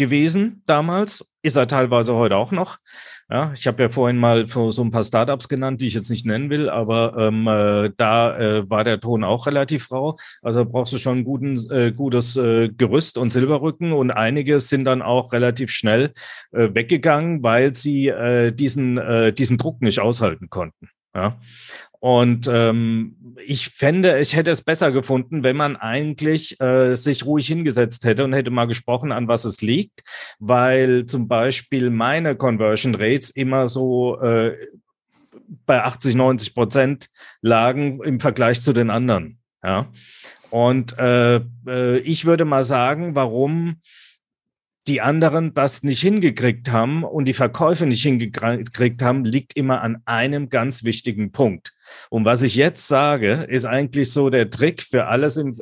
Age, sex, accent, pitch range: 40-59, male, German, 115-140 Hz